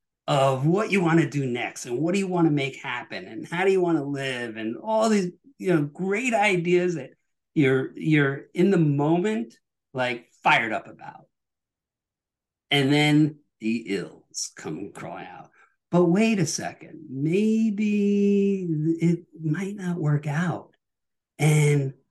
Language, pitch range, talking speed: English, 135-175 Hz, 155 wpm